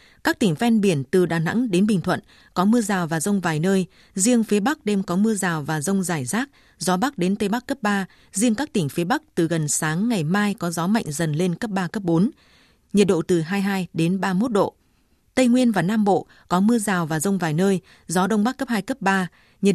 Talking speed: 245 wpm